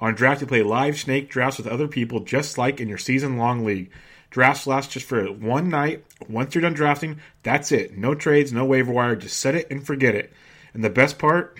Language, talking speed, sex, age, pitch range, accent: English, 225 wpm, male, 30-49, 120-145 Hz, American